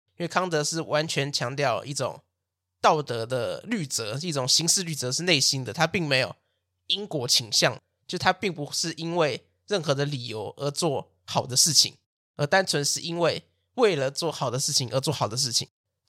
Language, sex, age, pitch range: Chinese, male, 20-39, 125-160 Hz